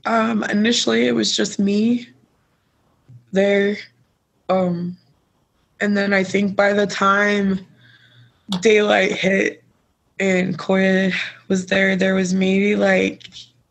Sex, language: female, English